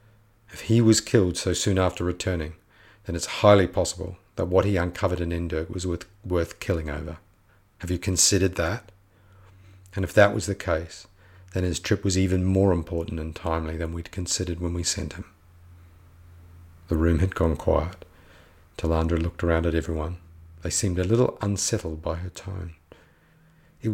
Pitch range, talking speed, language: 80-95 Hz, 170 wpm, English